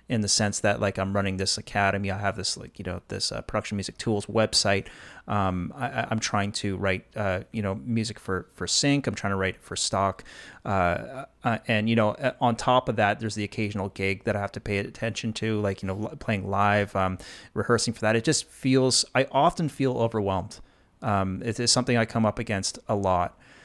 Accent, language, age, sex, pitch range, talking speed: American, English, 30-49, male, 105-125 Hz, 220 wpm